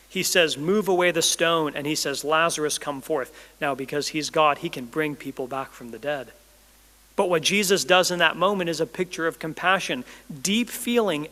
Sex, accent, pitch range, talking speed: male, American, 145-185 Hz, 200 wpm